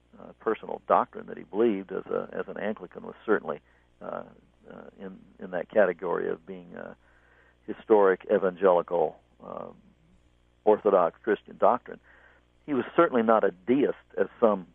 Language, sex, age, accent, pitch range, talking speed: English, male, 60-79, American, 90-110 Hz, 140 wpm